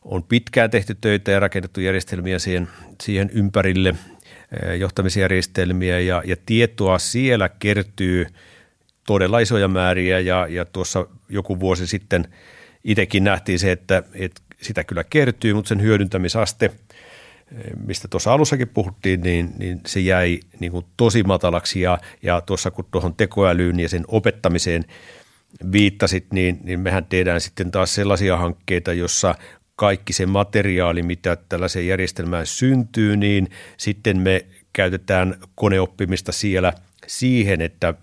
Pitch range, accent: 90-105 Hz, native